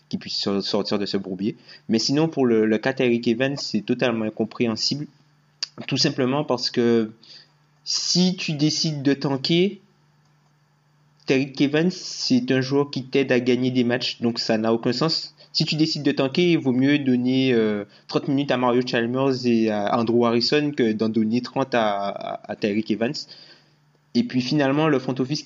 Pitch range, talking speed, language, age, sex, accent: 115-145 Hz, 170 wpm, French, 20-39, male, French